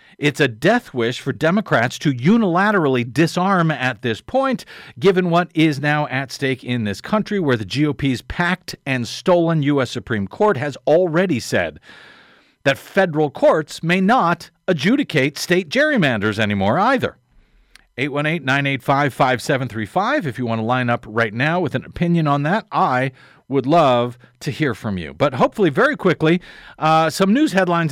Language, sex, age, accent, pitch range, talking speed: English, male, 50-69, American, 130-170 Hz, 155 wpm